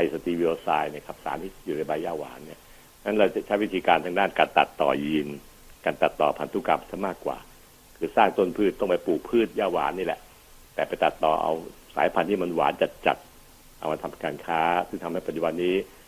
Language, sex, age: Thai, male, 60-79